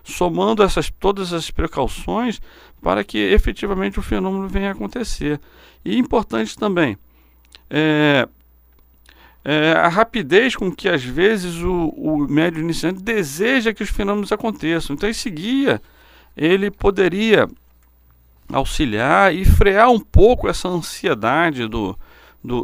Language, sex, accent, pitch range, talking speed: Portuguese, male, Brazilian, 135-200 Hz, 125 wpm